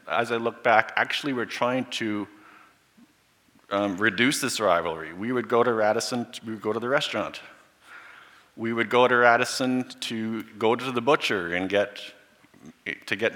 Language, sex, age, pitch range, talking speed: English, male, 40-59, 100-120 Hz, 165 wpm